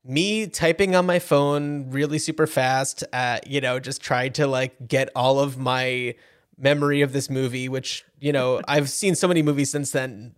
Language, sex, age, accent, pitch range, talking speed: English, male, 20-39, American, 130-175 Hz, 190 wpm